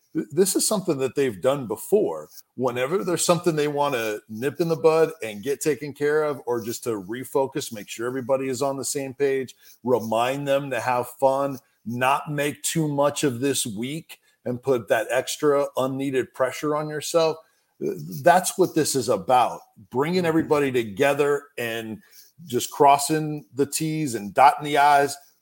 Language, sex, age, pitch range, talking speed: English, male, 40-59, 120-150 Hz, 170 wpm